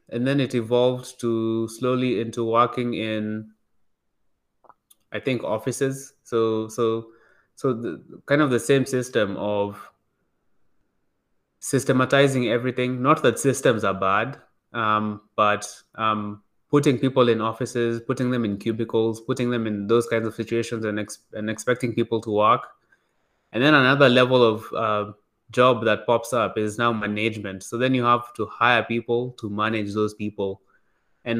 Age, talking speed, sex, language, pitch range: 20-39, 155 wpm, male, English, 110-125 Hz